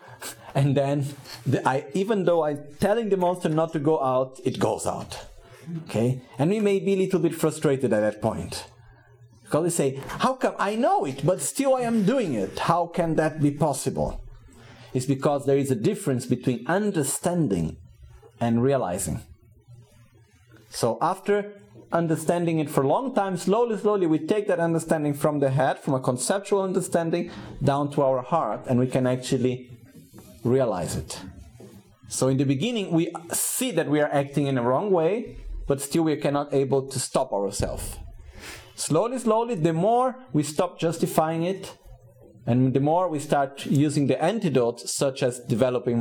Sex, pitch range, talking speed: male, 125-170 Hz, 165 wpm